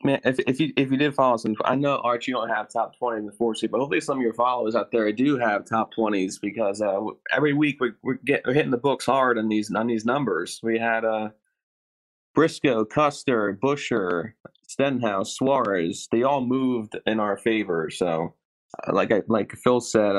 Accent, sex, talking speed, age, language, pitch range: American, male, 210 wpm, 20-39, English, 105-130 Hz